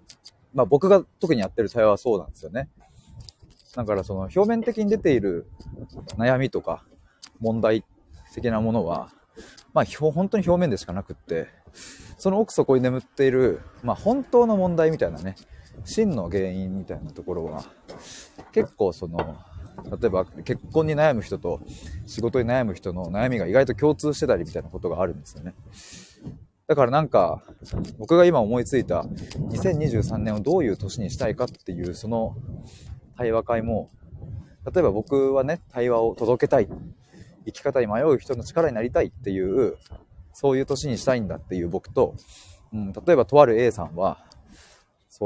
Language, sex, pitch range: Japanese, male, 95-140 Hz